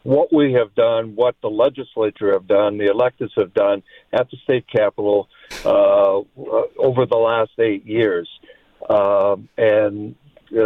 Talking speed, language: 145 wpm, English